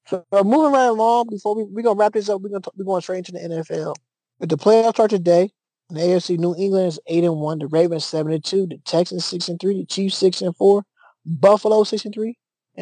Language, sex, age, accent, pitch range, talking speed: English, male, 20-39, American, 155-190 Hz, 220 wpm